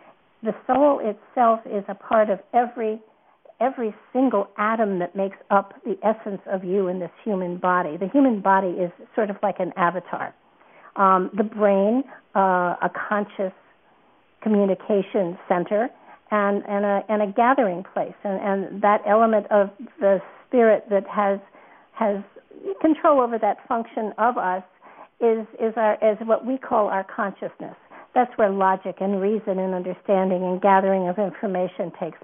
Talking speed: 155 wpm